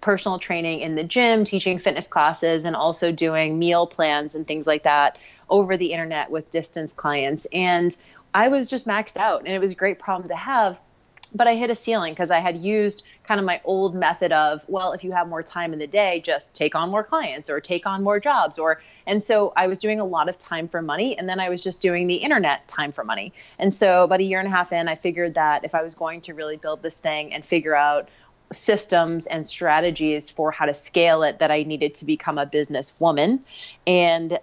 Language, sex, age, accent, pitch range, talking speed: English, female, 30-49, American, 155-185 Hz, 235 wpm